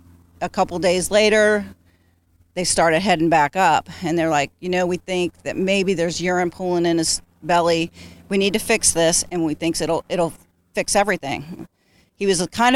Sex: female